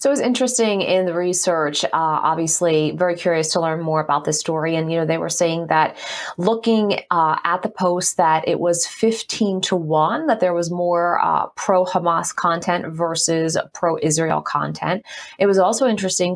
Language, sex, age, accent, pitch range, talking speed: English, female, 30-49, American, 165-200 Hz, 185 wpm